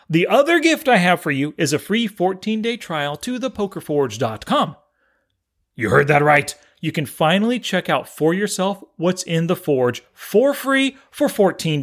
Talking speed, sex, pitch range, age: 165 wpm, male, 150-220 Hz, 30-49